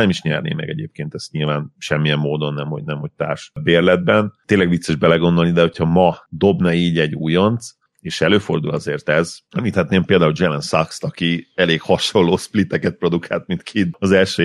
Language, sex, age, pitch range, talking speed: Hungarian, male, 30-49, 80-90 Hz, 180 wpm